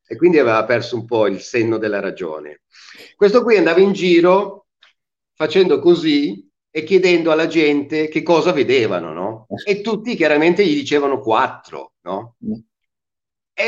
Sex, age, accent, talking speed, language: male, 50-69, native, 145 wpm, Italian